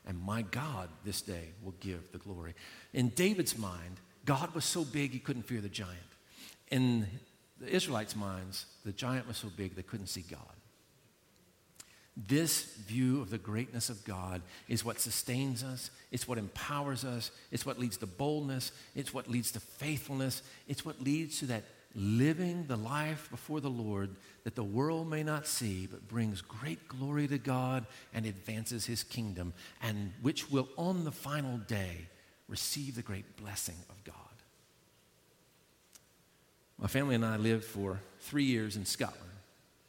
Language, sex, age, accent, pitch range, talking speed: English, male, 50-69, American, 100-135 Hz, 165 wpm